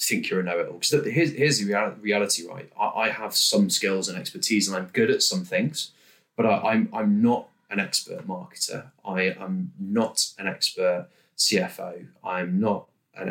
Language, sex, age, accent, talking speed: English, male, 20-39, British, 165 wpm